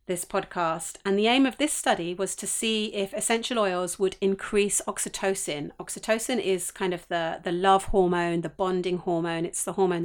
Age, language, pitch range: 40-59, English, 175-215 Hz